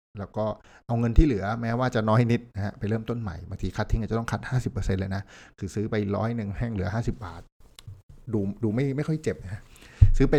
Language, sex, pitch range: Thai, male, 100-120 Hz